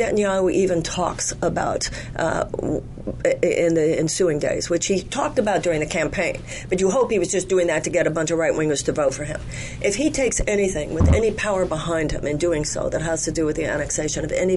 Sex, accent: female, American